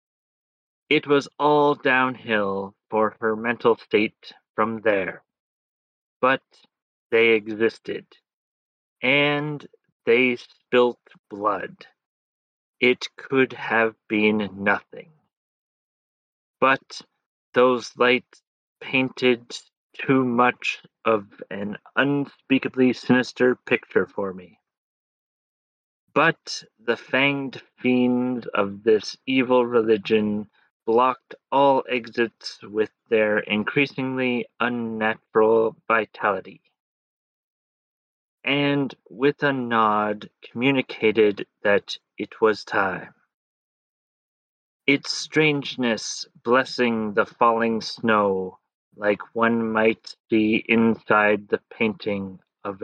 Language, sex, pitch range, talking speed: English, male, 110-130 Hz, 85 wpm